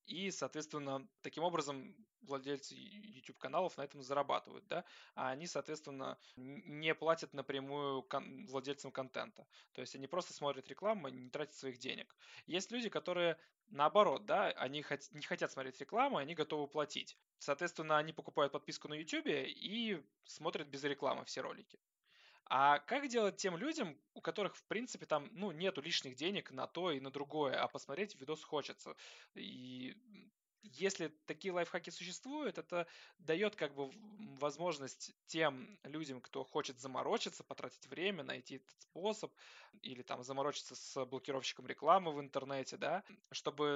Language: Russian